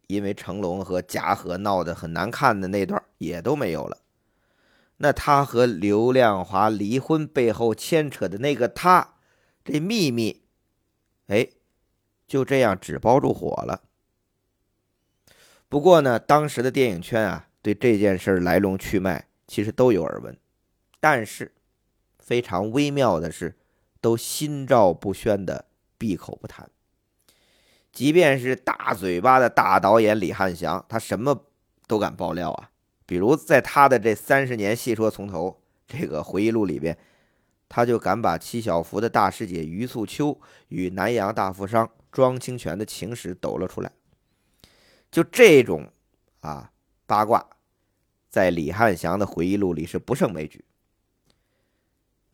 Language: Chinese